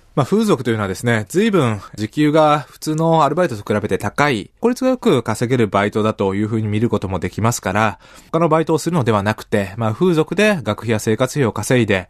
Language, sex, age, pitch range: Japanese, male, 20-39, 105-160 Hz